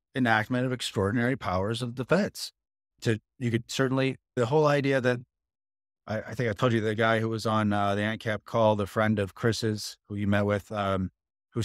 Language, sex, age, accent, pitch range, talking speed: English, male, 30-49, American, 100-120 Hz, 200 wpm